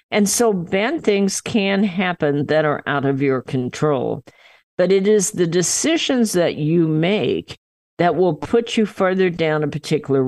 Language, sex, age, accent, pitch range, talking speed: English, female, 50-69, American, 145-195 Hz, 165 wpm